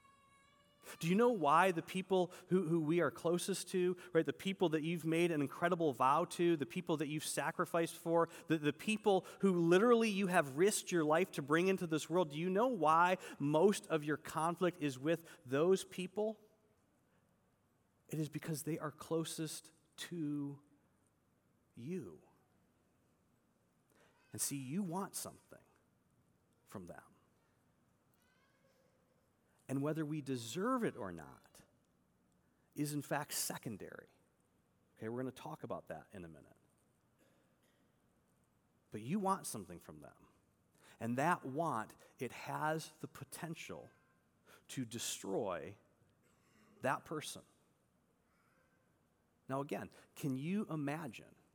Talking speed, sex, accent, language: 130 wpm, male, American, English